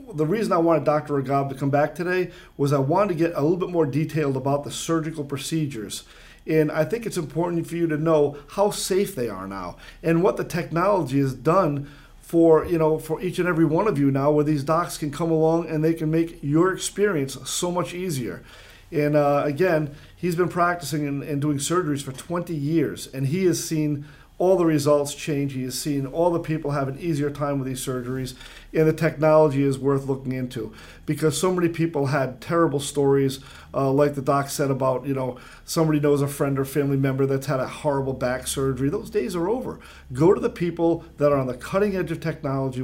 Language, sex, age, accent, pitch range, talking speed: English, male, 40-59, American, 135-165 Hz, 215 wpm